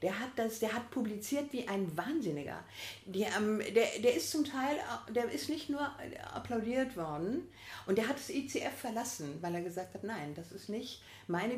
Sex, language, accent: female, German, German